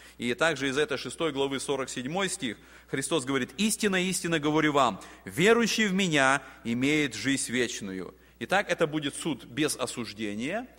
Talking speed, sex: 145 wpm, male